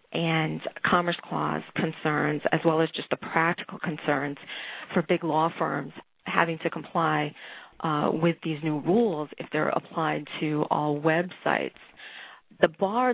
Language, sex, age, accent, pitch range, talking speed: English, female, 40-59, American, 150-175 Hz, 140 wpm